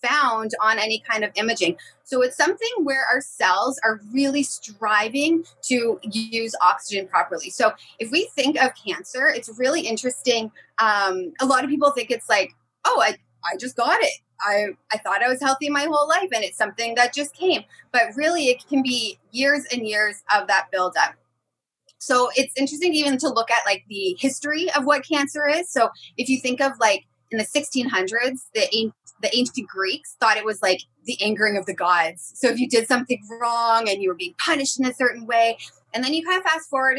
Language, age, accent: English, 20-39, American